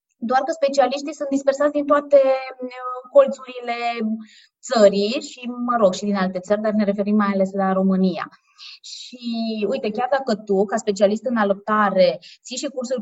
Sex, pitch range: female, 195-265 Hz